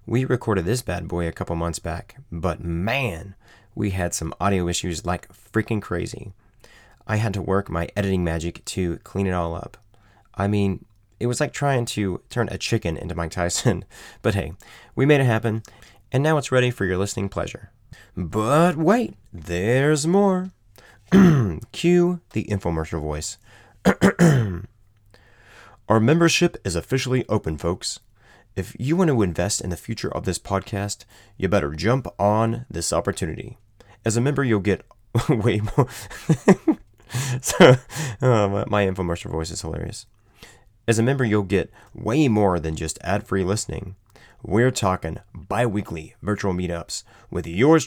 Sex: male